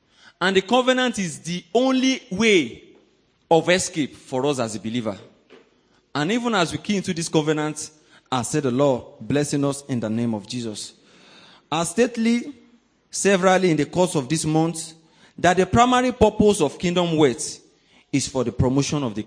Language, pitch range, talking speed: English, 135-195 Hz, 170 wpm